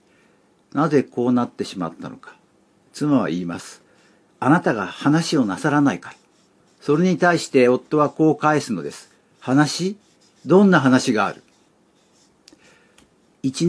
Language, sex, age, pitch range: Japanese, male, 60-79, 110-155 Hz